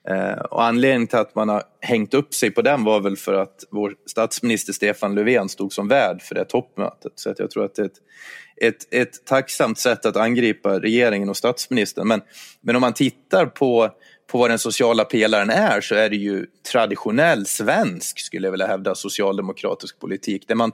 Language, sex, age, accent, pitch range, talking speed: Swedish, male, 30-49, native, 100-125 Hz, 190 wpm